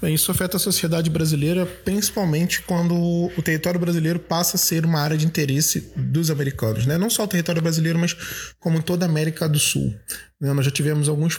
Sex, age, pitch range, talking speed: male, 20-39, 140-170 Hz, 200 wpm